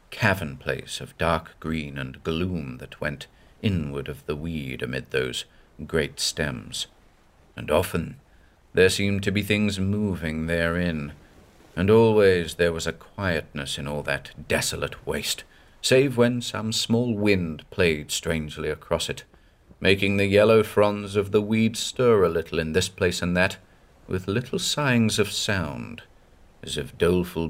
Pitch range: 80-110 Hz